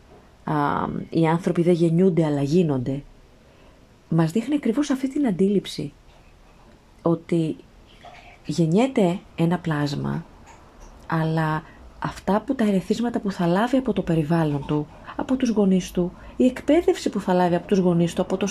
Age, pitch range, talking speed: 30-49, 160-210 Hz, 140 wpm